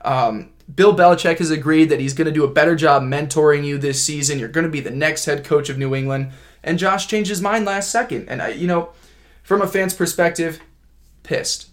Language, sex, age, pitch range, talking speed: English, male, 20-39, 130-160 Hz, 225 wpm